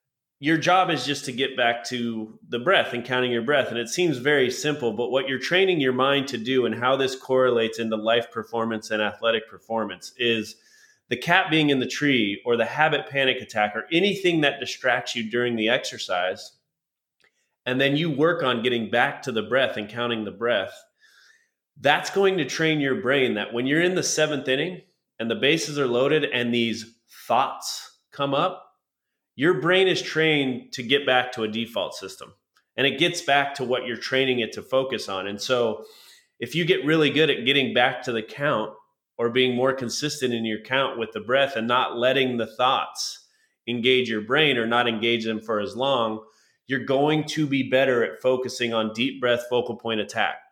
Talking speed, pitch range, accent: 200 wpm, 115-140 Hz, American